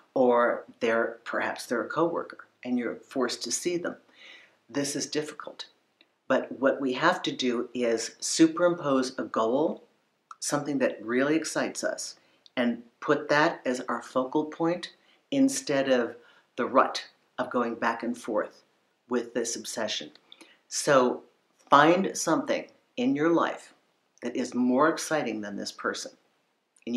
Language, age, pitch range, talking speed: English, 60-79, 125-155 Hz, 140 wpm